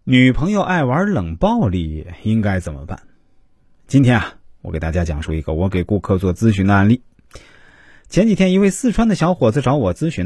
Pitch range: 85-125 Hz